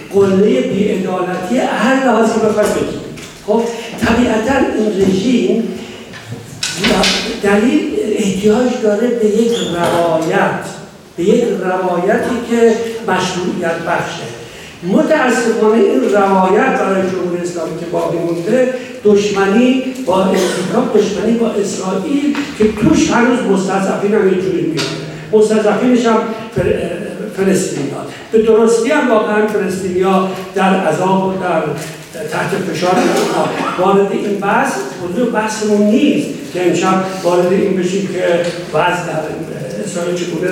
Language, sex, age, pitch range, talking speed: Persian, male, 60-79, 180-220 Hz, 110 wpm